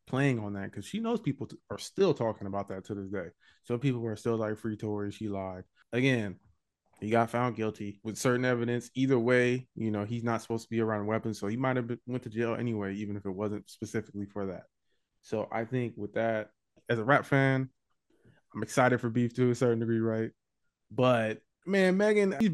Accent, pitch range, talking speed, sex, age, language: American, 110-130 Hz, 215 wpm, male, 20-39, English